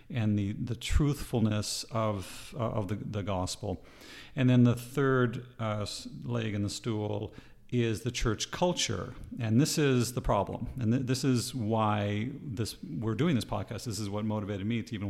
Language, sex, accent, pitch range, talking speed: English, male, American, 105-125 Hz, 180 wpm